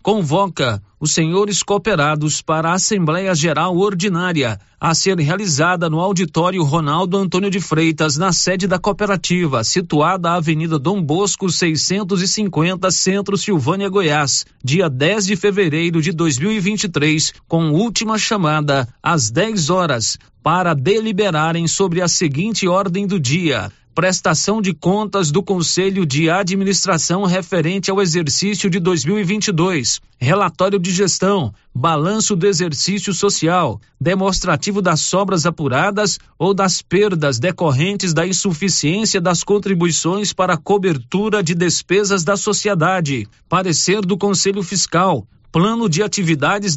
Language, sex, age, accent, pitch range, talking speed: Portuguese, male, 40-59, Brazilian, 160-200 Hz, 125 wpm